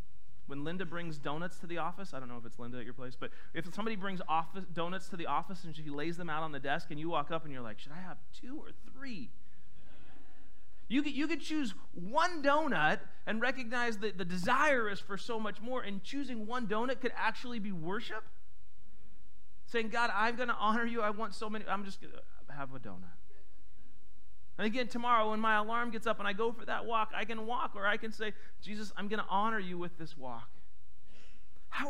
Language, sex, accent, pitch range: English, male, American, 170-230 Hz